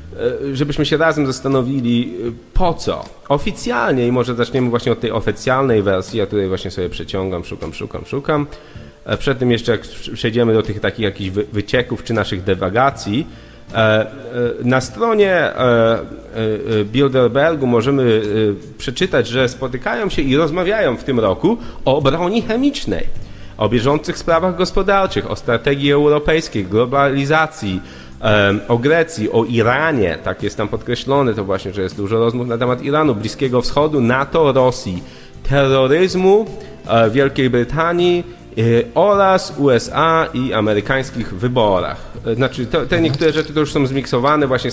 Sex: male